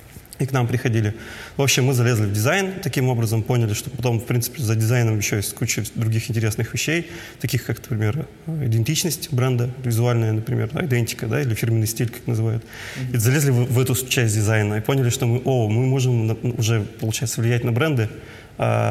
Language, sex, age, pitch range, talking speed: Russian, male, 30-49, 115-135 Hz, 185 wpm